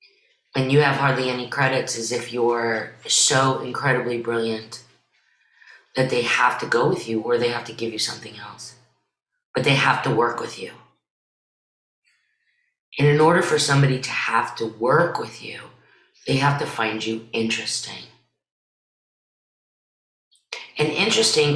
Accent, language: American, English